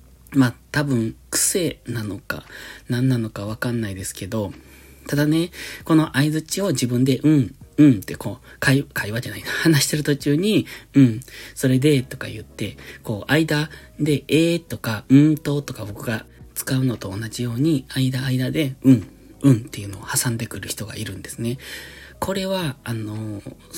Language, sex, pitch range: Japanese, male, 110-150 Hz